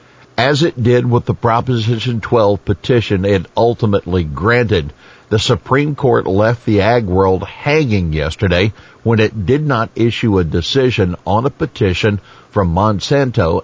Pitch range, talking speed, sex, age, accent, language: 90-120 Hz, 140 wpm, male, 60-79, American, English